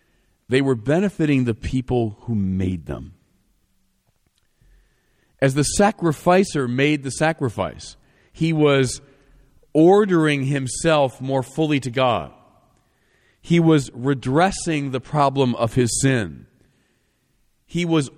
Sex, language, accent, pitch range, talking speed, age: male, English, American, 105-155 Hz, 105 wpm, 40-59